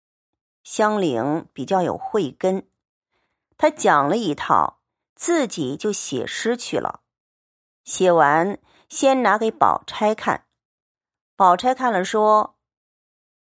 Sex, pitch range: female, 195-275 Hz